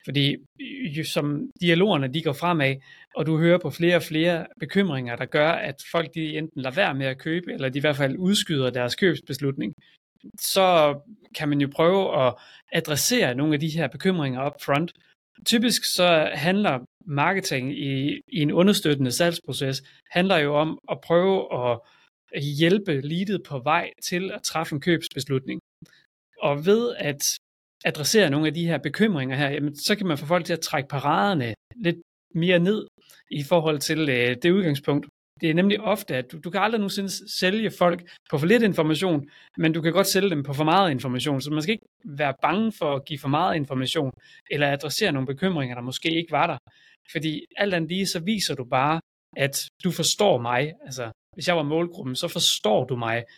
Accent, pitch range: native, 140-180 Hz